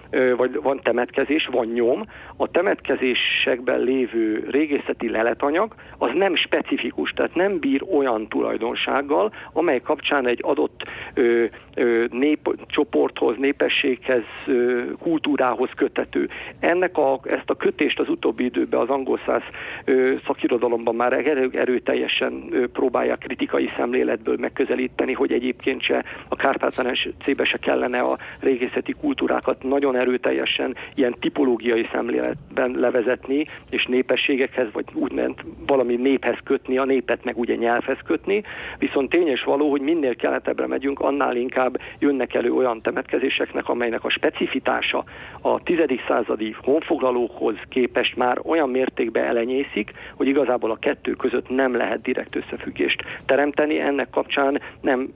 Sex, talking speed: male, 125 wpm